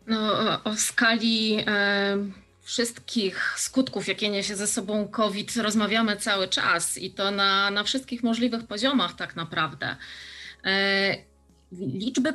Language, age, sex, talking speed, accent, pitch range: Polish, 30-49, female, 110 wpm, native, 195-235 Hz